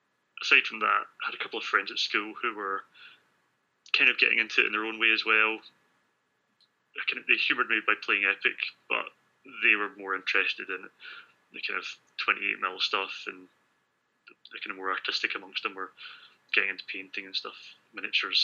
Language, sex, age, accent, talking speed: English, male, 20-39, British, 195 wpm